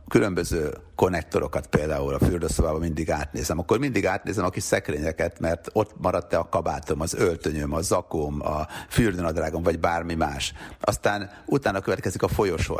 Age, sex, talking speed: 60-79, male, 150 wpm